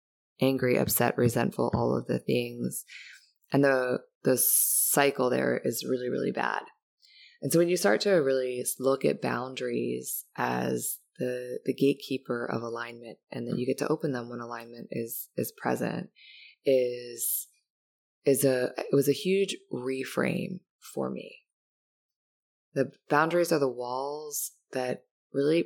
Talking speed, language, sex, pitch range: 145 wpm, English, female, 125-150 Hz